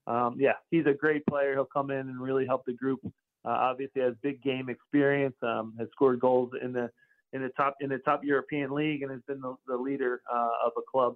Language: English